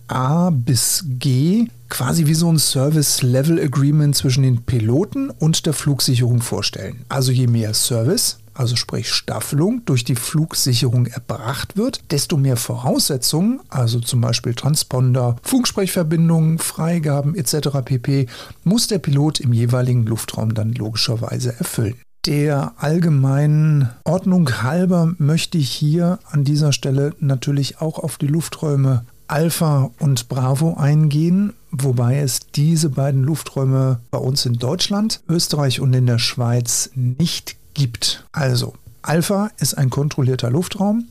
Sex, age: male, 50-69